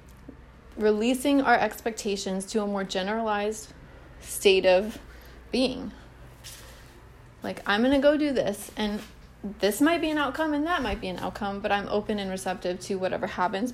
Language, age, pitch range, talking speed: English, 30-49, 190-230 Hz, 155 wpm